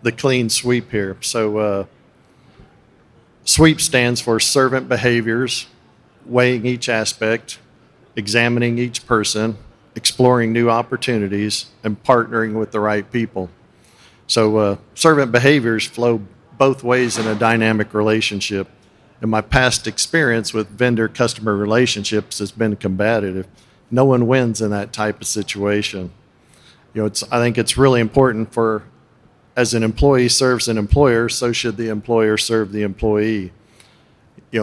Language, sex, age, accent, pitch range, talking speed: English, male, 50-69, American, 105-125 Hz, 135 wpm